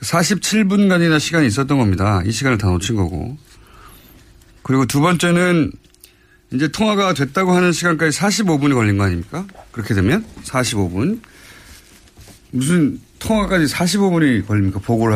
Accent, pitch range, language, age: native, 105-160 Hz, Korean, 30-49